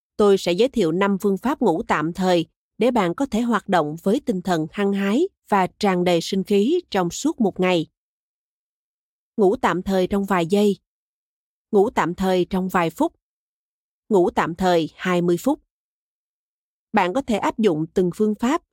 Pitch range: 175-230 Hz